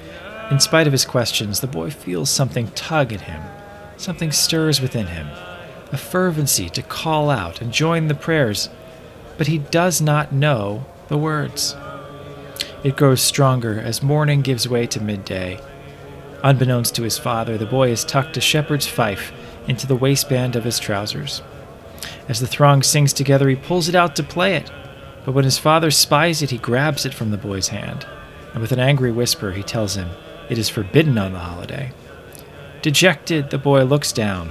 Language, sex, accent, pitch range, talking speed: English, male, American, 105-145 Hz, 175 wpm